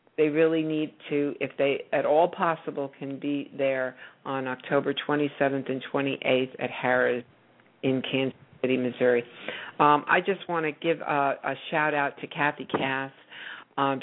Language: English